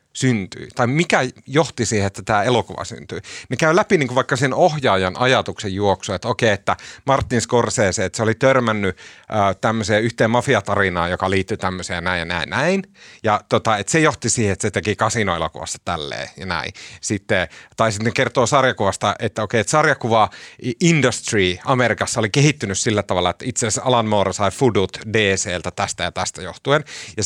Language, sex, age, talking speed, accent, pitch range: Finnish, male, 30-49, 175 wpm, native, 100-135 Hz